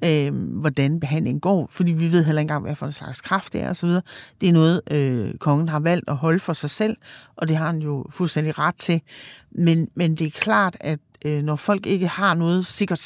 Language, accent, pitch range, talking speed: Danish, native, 140-170 Hz, 235 wpm